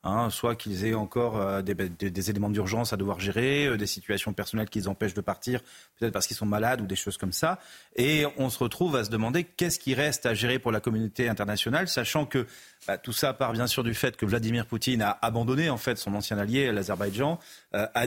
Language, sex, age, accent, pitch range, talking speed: French, male, 40-59, French, 105-135 Hz, 230 wpm